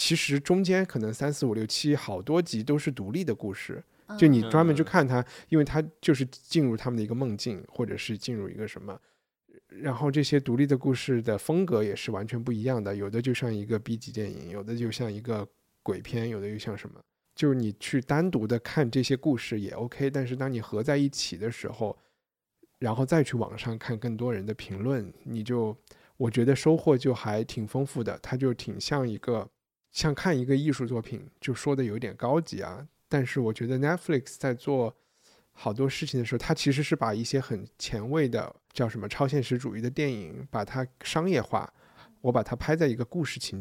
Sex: male